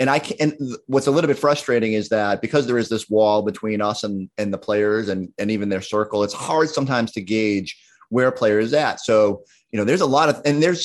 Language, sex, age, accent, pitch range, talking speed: English, male, 30-49, American, 110-155 Hz, 260 wpm